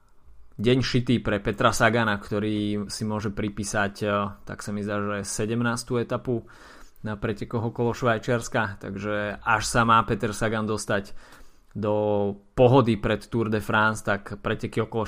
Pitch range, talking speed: 105-120 Hz, 145 wpm